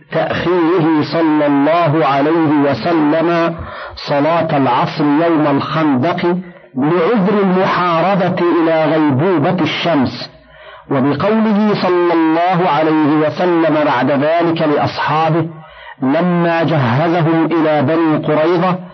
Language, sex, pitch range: Arabic, male, 150-170 Hz